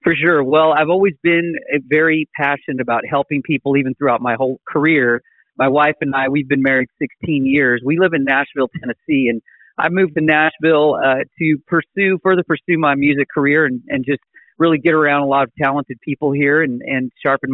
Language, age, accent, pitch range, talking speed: English, 40-59, American, 135-155 Hz, 200 wpm